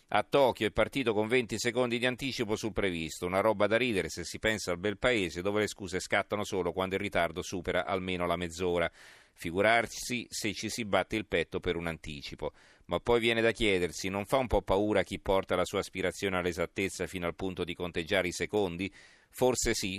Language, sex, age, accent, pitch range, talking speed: Italian, male, 40-59, native, 85-105 Hz, 205 wpm